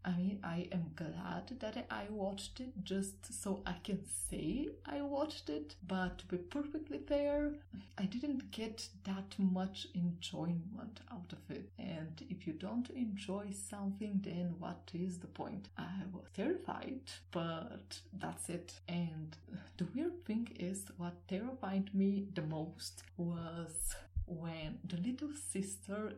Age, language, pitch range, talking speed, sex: 30-49, English, 175-215 Hz, 145 wpm, female